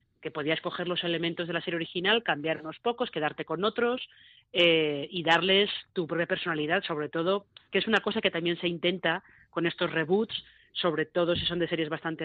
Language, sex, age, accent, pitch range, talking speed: Spanish, female, 20-39, Spanish, 155-190 Hz, 200 wpm